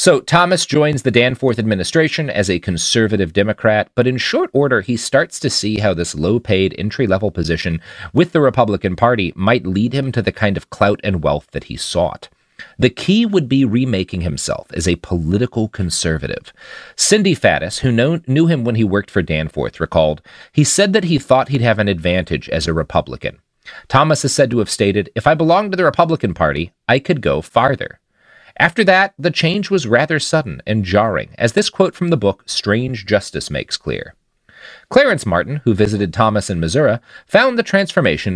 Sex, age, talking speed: male, 40-59, 185 wpm